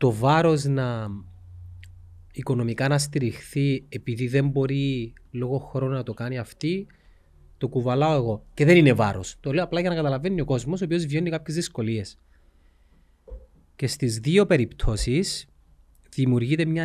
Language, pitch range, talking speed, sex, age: Greek, 115-150 Hz, 145 wpm, male, 30-49